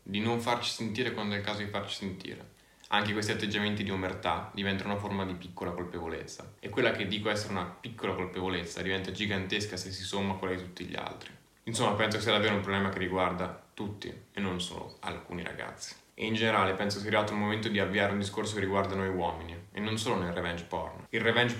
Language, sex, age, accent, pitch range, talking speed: Italian, male, 10-29, native, 95-115 Hz, 220 wpm